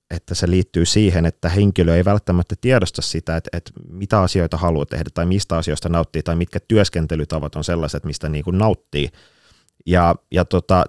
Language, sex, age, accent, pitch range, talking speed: Finnish, male, 30-49, native, 80-105 Hz, 175 wpm